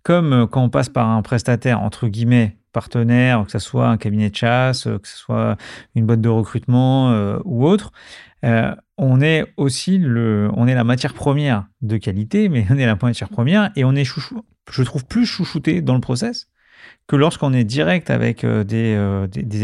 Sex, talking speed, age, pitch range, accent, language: male, 195 wpm, 40-59, 115-140 Hz, French, French